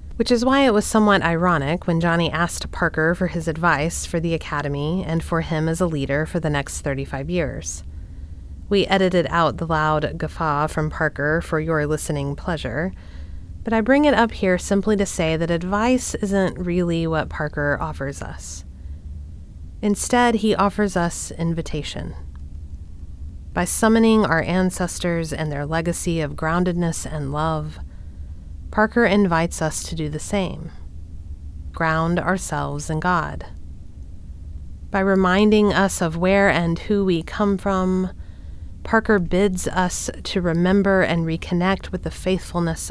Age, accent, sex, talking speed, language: 30-49, American, female, 145 wpm, English